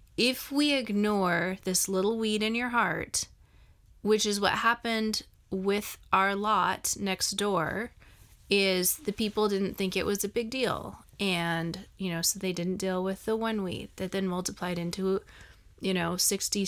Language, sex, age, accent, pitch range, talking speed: English, female, 30-49, American, 175-200 Hz, 165 wpm